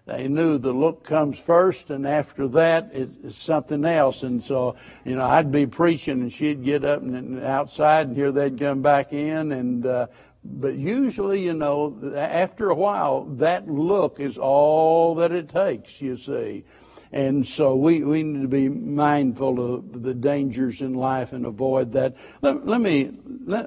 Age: 60-79